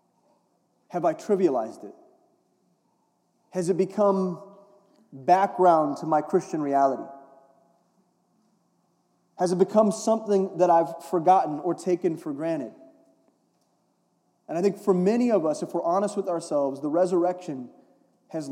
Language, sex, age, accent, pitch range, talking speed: English, male, 30-49, American, 140-190 Hz, 125 wpm